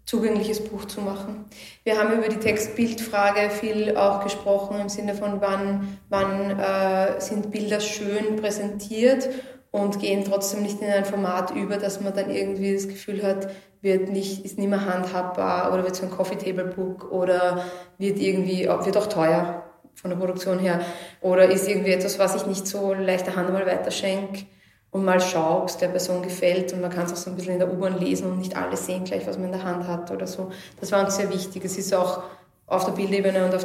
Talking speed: 205 wpm